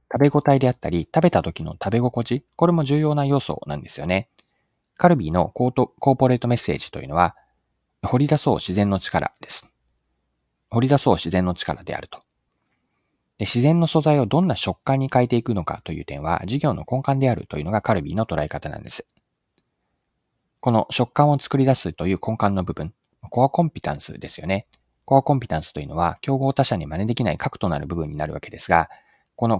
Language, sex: Japanese, male